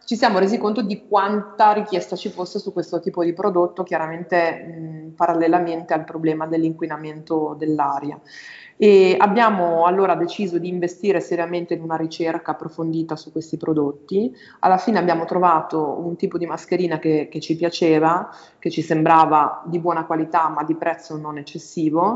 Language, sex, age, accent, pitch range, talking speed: Italian, female, 20-39, native, 160-190 Hz, 155 wpm